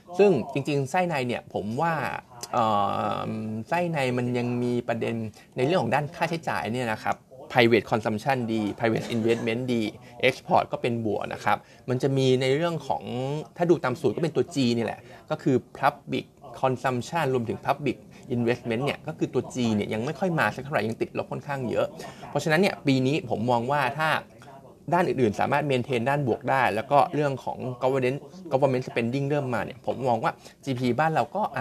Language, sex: Thai, male